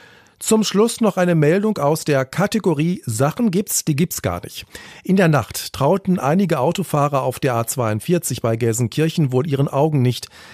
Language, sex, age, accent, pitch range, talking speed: German, male, 40-59, German, 120-165 Hz, 165 wpm